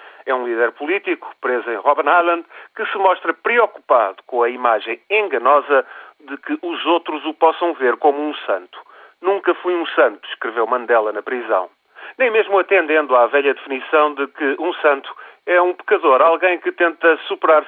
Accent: Portuguese